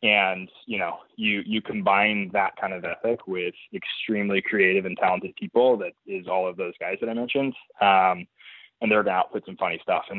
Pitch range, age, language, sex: 100-130 Hz, 20-39, English, male